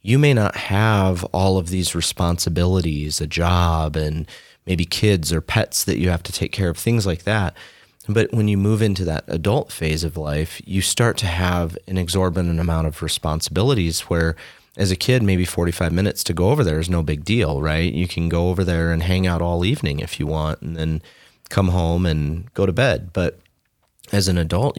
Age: 30-49